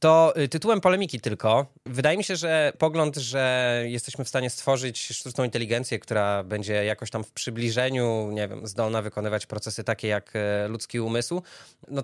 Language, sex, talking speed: Polish, male, 160 wpm